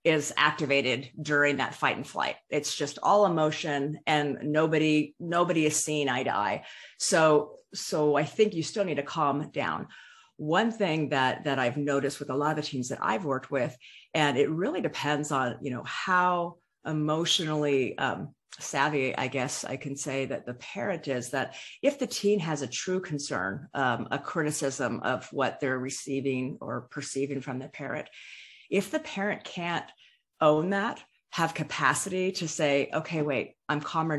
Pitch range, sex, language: 140-195 Hz, female, English